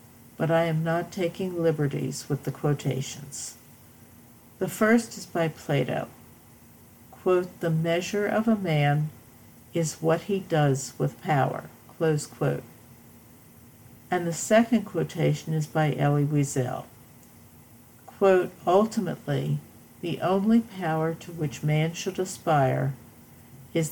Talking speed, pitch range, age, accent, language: 120 wpm, 135-185 Hz, 60-79, American, English